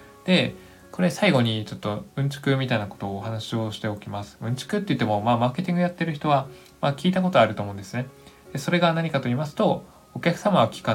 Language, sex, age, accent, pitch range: Japanese, male, 20-39, native, 110-150 Hz